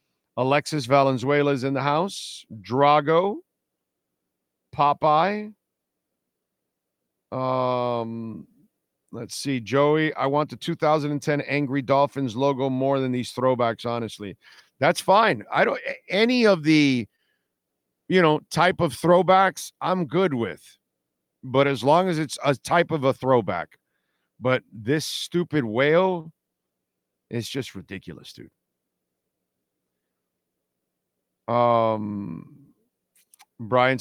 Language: English